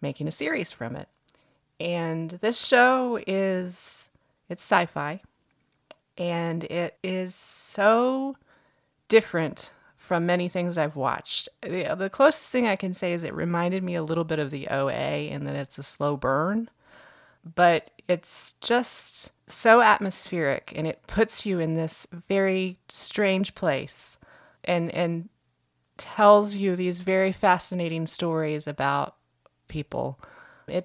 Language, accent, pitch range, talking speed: English, American, 140-180 Hz, 130 wpm